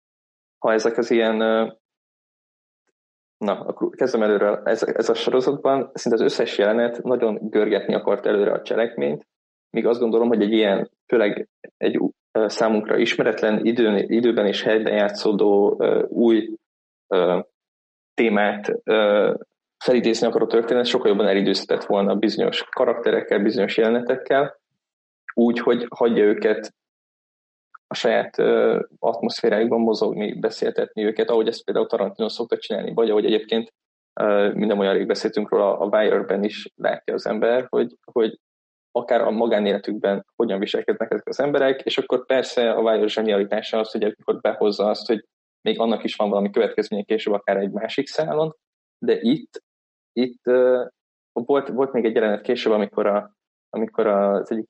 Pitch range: 105-160 Hz